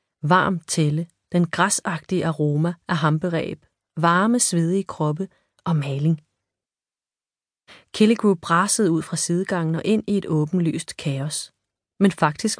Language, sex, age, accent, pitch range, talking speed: Danish, female, 30-49, native, 155-190 Hz, 120 wpm